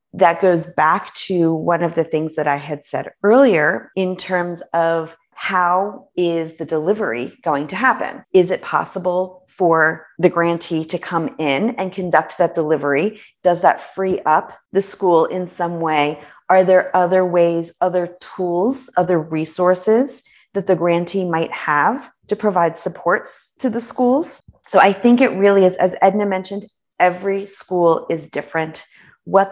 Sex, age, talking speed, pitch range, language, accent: female, 30-49, 160 wpm, 160-190 Hz, English, American